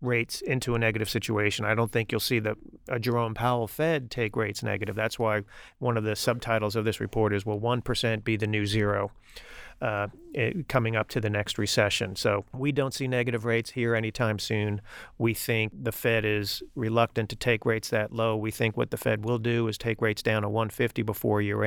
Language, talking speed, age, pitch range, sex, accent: English, 210 wpm, 40-59, 110-120 Hz, male, American